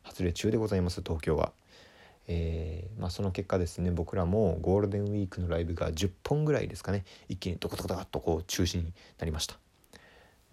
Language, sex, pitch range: Japanese, male, 90-115 Hz